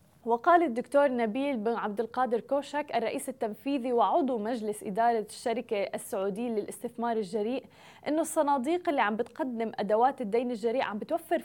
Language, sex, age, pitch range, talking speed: Arabic, female, 20-39, 225-275 Hz, 135 wpm